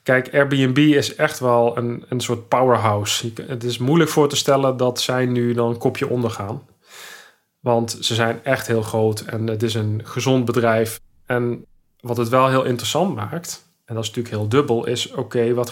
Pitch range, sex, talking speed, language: 115-130 Hz, male, 190 wpm, Dutch